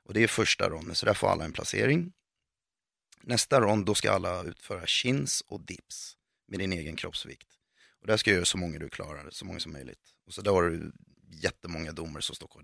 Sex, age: male, 30-49